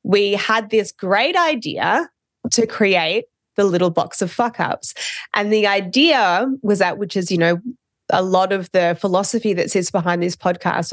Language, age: English, 20-39